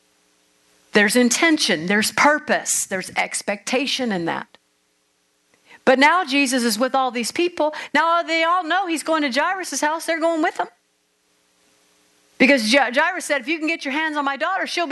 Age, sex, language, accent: 50-69, female, English, American